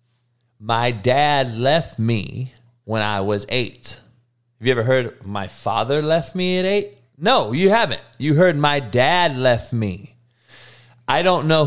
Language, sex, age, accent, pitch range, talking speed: English, male, 30-49, American, 120-150 Hz, 155 wpm